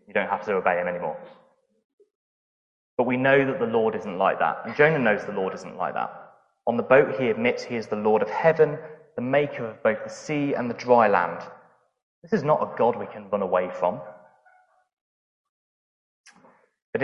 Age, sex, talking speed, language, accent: 20-39, male, 195 wpm, English, British